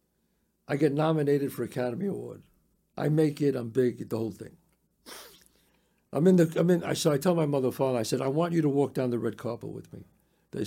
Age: 60-79